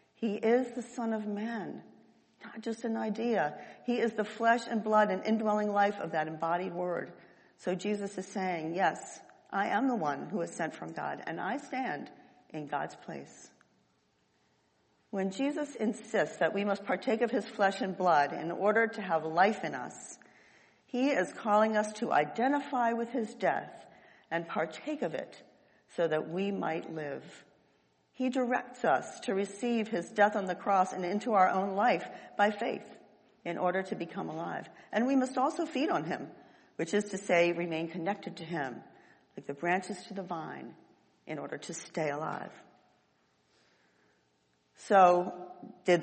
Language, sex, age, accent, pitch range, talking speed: English, female, 50-69, American, 175-240 Hz, 170 wpm